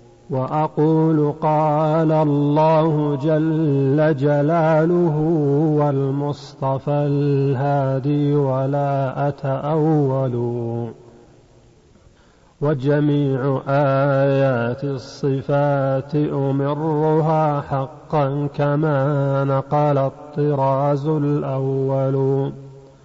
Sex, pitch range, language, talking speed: male, 135-155 Hz, Arabic, 50 wpm